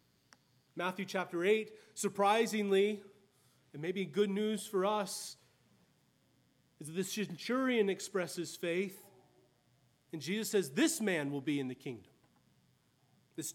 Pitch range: 145-215 Hz